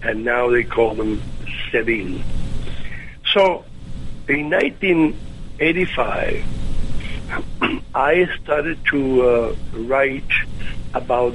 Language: English